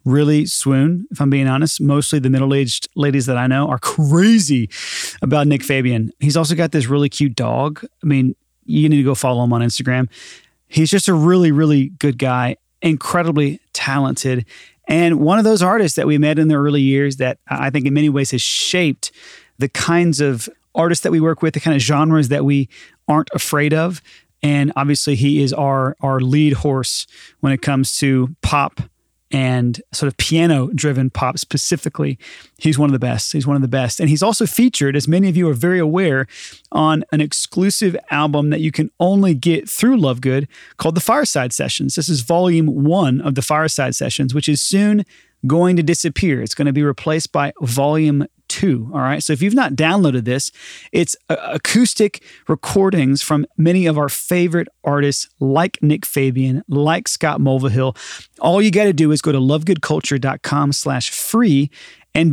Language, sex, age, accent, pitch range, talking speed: English, male, 30-49, American, 135-165 Hz, 185 wpm